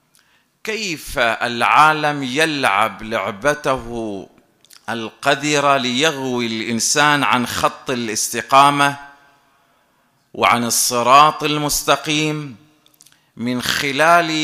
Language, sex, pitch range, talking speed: Arabic, male, 125-160 Hz, 60 wpm